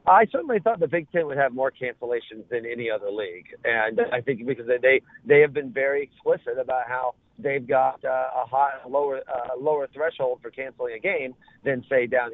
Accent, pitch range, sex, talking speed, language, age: American, 135-225 Hz, male, 205 wpm, English, 50-69